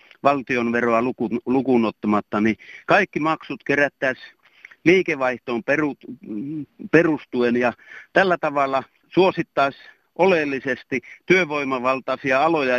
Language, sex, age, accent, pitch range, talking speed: Finnish, male, 60-79, native, 130-155 Hz, 70 wpm